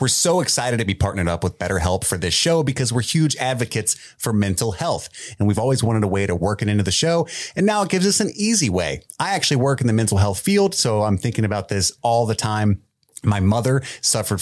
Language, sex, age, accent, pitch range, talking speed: English, male, 30-49, American, 100-135 Hz, 245 wpm